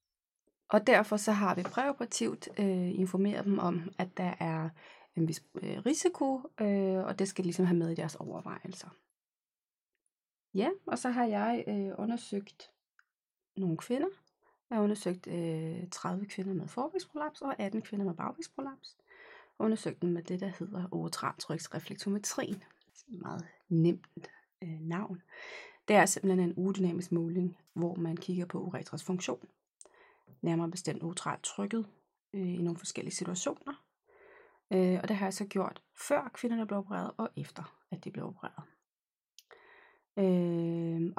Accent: native